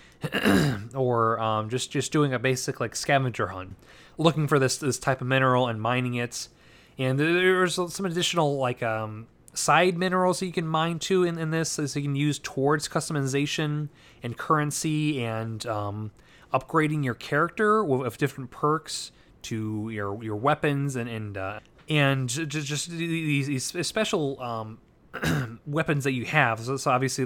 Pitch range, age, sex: 125-160 Hz, 20-39, male